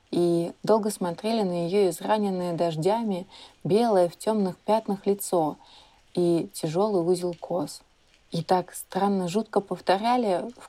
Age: 20-39